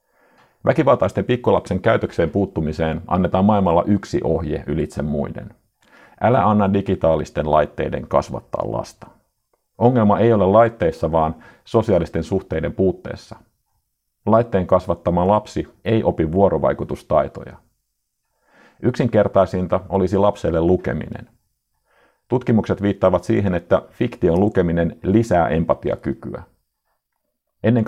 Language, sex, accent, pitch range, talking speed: Finnish, male, native, 85-105 Hz, 95 wpm